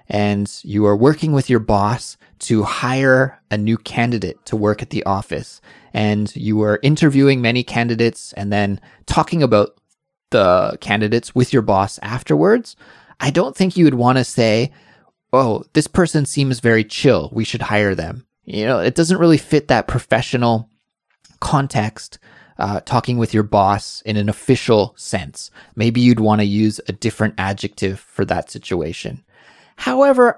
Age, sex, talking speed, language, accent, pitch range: 20-39, male, 155 wpm, English, American, 110-145 Hz